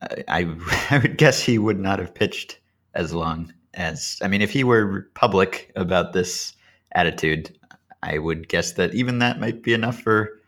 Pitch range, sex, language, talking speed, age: 85-110 Hz, male, English, 180 wpm, 30-49